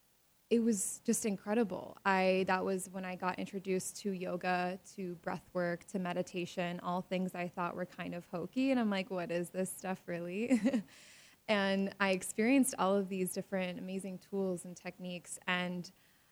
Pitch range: 180-205 Hz